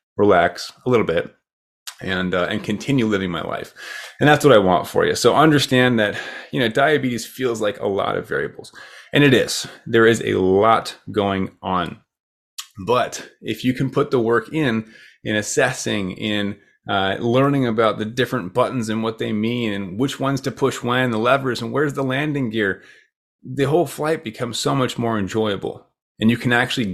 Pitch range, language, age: 105-130 Hz, English, 30-49